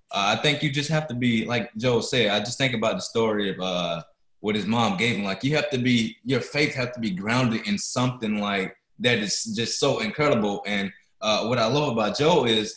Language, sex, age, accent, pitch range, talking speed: English, male, 20-39, American, 115-145 Hz, 240 wpm